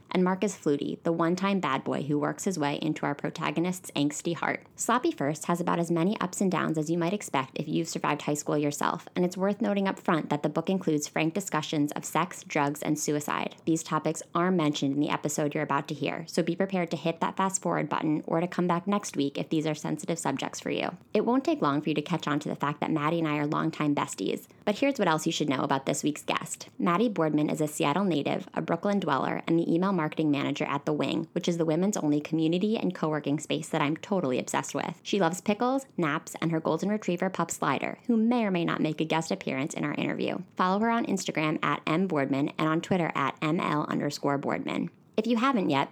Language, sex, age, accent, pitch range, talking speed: English, female, 20-39, American, 155-190 Hz, 240 wpm